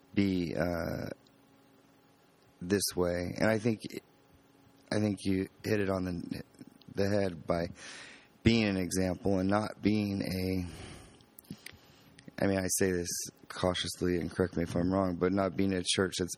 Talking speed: 155 wpm